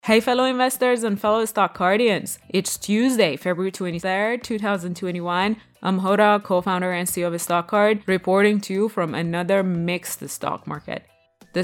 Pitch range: 180-225 Hz